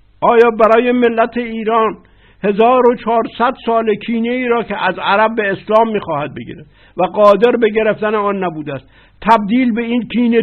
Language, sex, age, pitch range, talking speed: Persian, male, 60-79, 180-235 Hz, 160 wpm